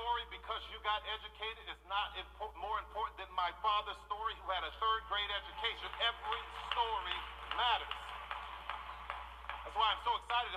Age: 50-69